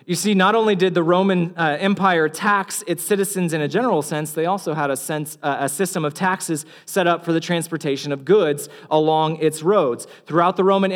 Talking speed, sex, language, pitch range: 205 wpm, male, English, 160-200 Hz